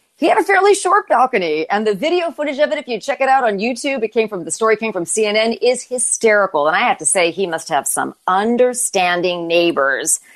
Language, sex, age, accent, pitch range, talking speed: English, female, 40-59, American, 175-245 Hz, 230 wpm